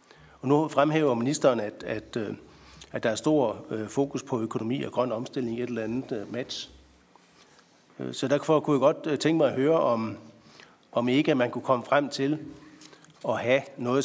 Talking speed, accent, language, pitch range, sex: 170 wpm, native, Danish, 115-135 Hz, male